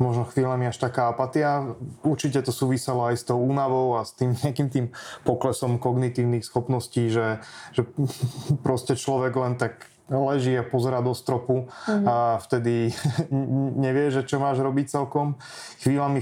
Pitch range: 115-130 Hz